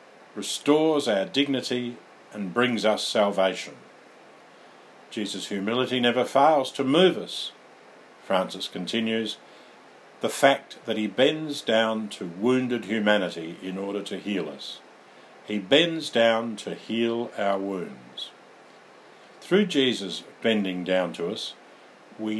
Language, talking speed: English, 120 wpm